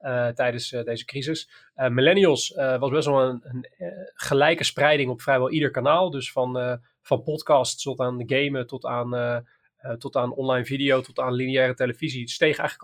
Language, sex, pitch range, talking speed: Dutch, male, 125-150 Hz, 205 wpm